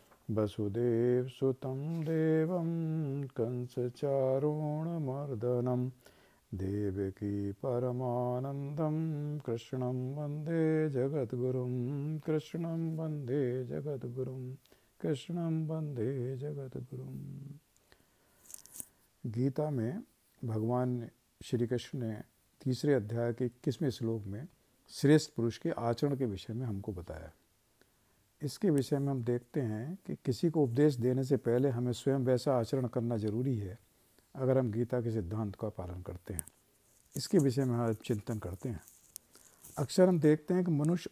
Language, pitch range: Hindi, 120-150 Hz